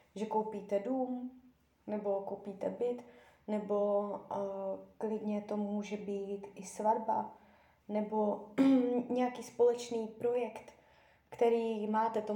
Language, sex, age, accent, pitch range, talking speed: Czech, female, 20-39, native, 200-230 Hz, 100 wpm